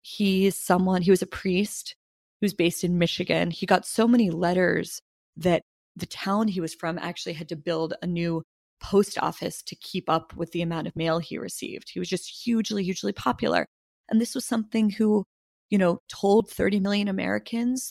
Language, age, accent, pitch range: English, 20-39, American, 175-220 Hz